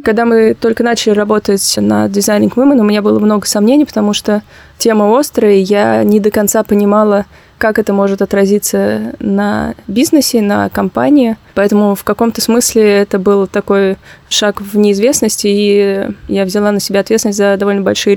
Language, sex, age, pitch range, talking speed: Russian, female, 20-39, 195-210 Hz, 160 wpm